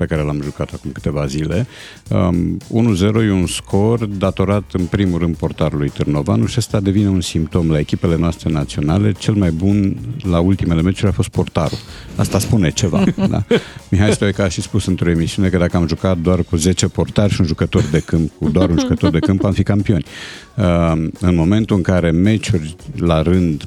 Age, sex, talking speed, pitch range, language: 50-69, male, 195 wpm, 85-110 Hz, Romanian